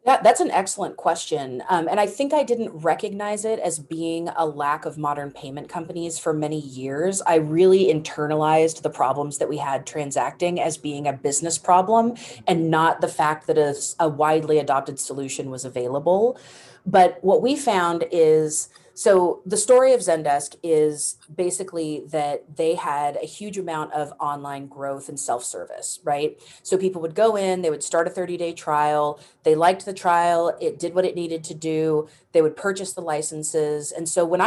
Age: 30-49